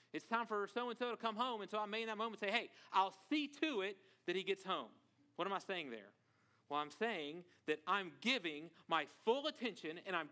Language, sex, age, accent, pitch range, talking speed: English, male, 40-59, American, 150-210 Hz, 235 wpm